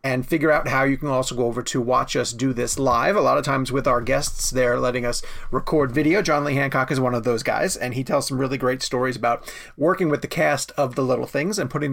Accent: American